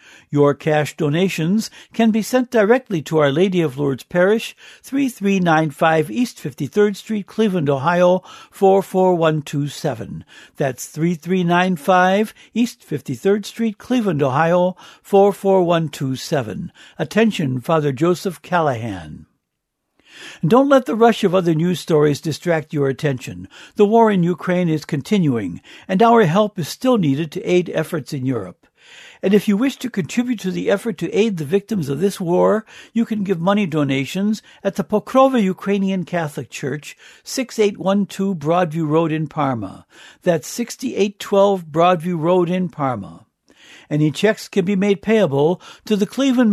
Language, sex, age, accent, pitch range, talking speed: English, male, 60-79, American, 155-210 Hz, 140 wpm